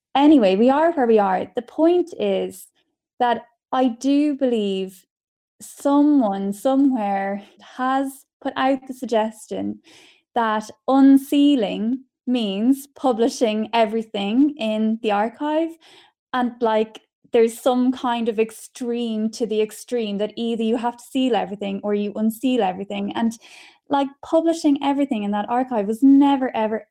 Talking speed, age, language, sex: 130 wpm, 10-29, English, female